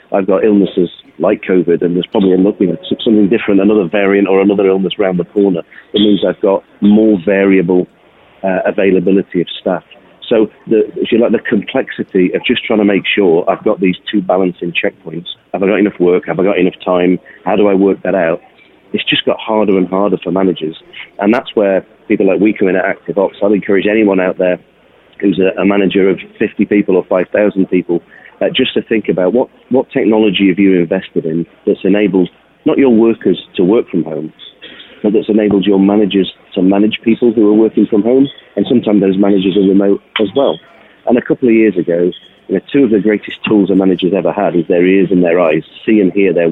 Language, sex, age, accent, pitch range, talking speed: English, male, 40-59, British, 90-105 Hz, 210 wpm